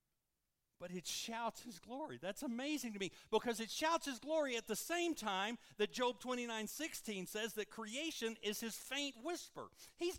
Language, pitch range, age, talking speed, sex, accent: English, 155-220 Hz, 50-69, 170 wpm, male, American